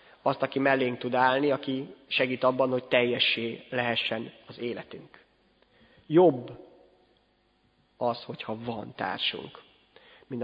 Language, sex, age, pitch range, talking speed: Hungarian, male, 30-49, 120-140 Hz, 110 wpm